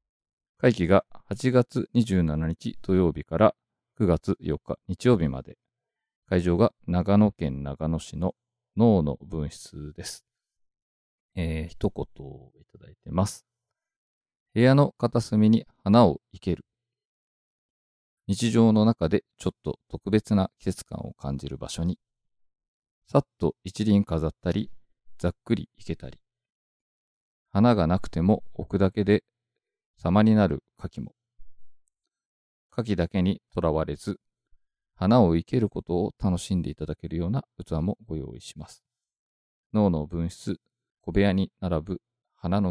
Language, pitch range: Japanese, 80-110 Hz